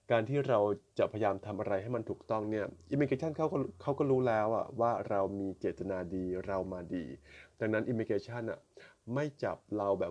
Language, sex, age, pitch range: Thai, male, 20-39, 100-125 Hz